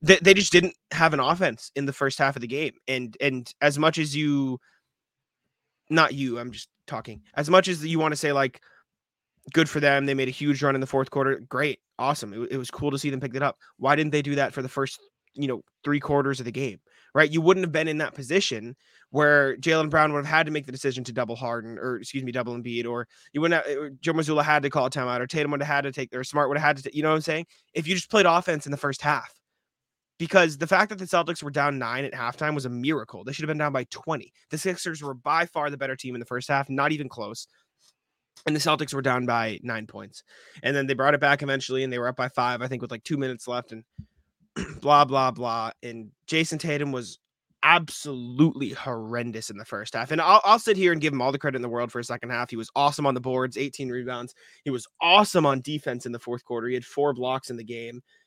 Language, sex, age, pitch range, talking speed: English, male, 20-39, 125-150 Hz, 260 wpm